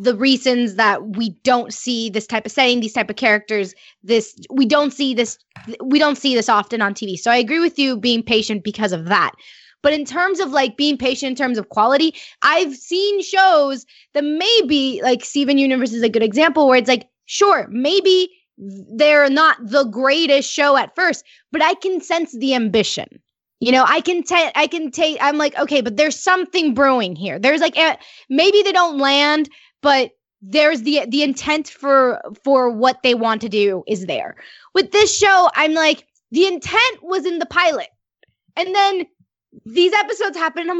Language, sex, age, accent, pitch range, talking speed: English, female, 20-39, American, 240-340 Hz, 195 wpm